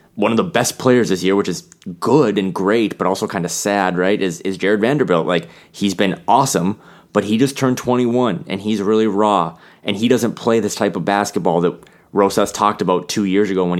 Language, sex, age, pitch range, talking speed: English, male, 20-39, 95-115 Hz, 220 wpm